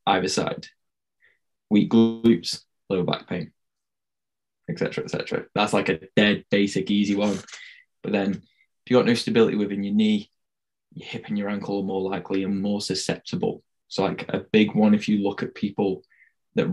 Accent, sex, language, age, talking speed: British, male, English, 10-29, 180 wpm